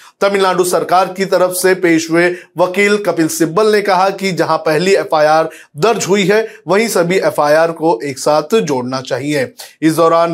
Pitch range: 155-190 Hz